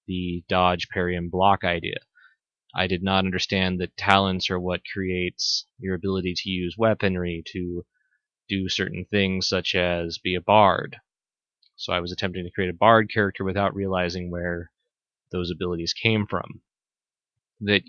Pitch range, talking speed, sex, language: 90-115 Hz, 155 wpm, male, English